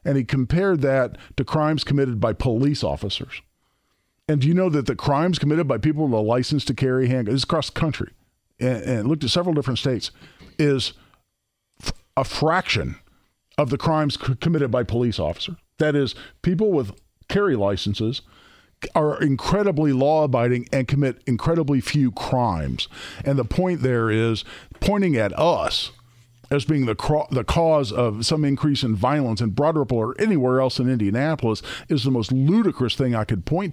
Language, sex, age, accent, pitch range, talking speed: English, male, 50-69, American, 125-155 Hz, 175 wpm